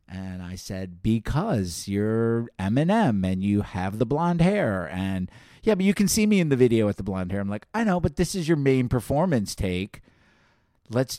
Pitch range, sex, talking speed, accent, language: 100-140 Hz, male, 205 wpm, American, English